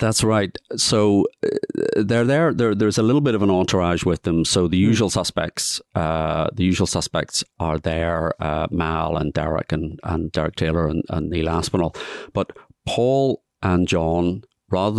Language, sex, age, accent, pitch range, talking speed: English, male, 40-59, British, 80-100 Hz, 165 wpm